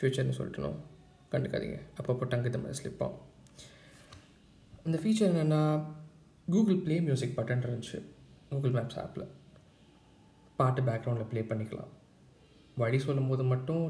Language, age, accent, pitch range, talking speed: Tamil, 20-39, native, 125-155 Hz, 110 wpm